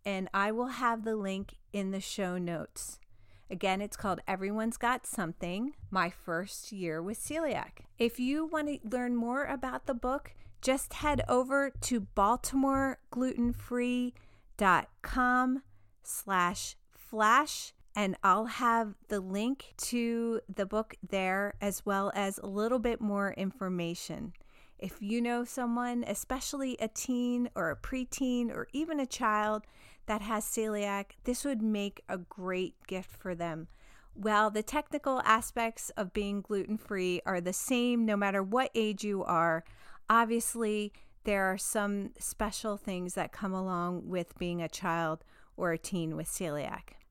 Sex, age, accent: female, 40-59, American